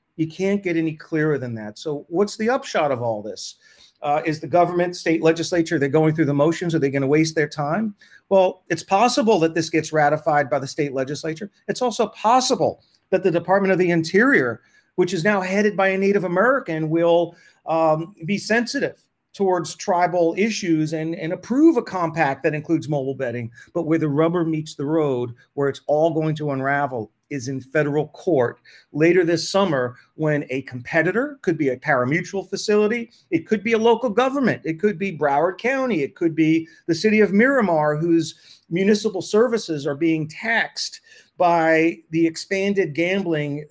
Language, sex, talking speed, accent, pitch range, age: English, male, 180 wpm, American, 155-200 Hz, 40-59